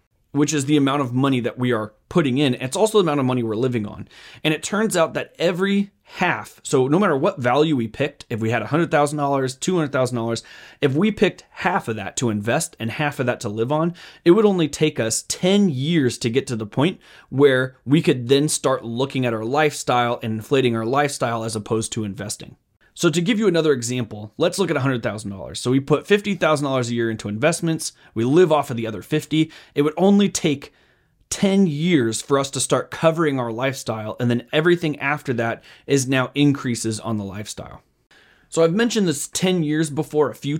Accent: American